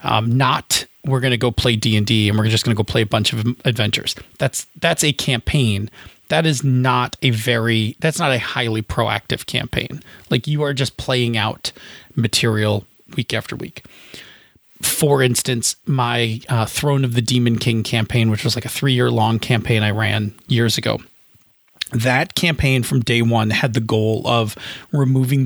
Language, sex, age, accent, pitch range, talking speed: English, male, 30-49, American, 115-150 Hz, 185 wpm